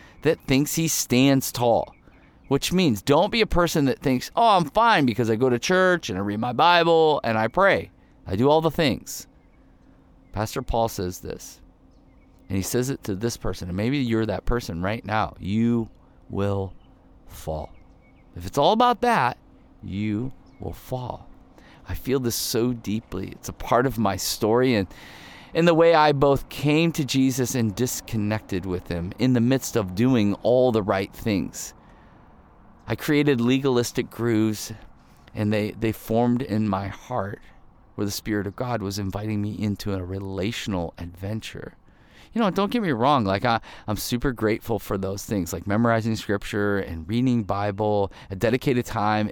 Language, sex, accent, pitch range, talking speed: English, male, American, 100-130 Hz, 175 wpm